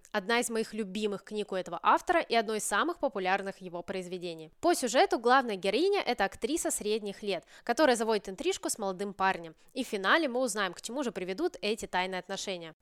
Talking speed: 190 wpm